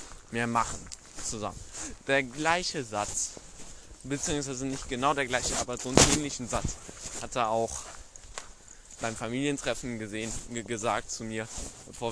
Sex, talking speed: male, 135 wpm